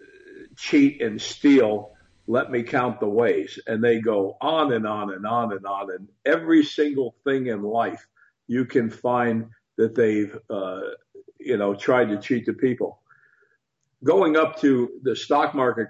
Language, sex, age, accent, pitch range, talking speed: English, male, 50-69, American, 100-140 Hz, 160 wpm